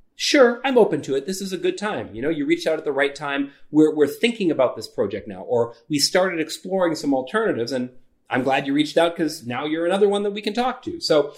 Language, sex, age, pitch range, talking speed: English, male, 30-49, 140-225 Hz, 260 wpm